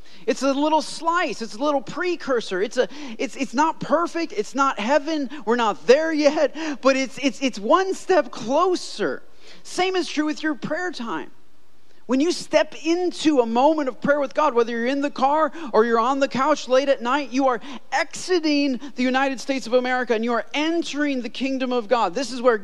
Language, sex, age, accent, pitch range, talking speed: English, male, 40-59, American, 215-285 Hz, 205 wpm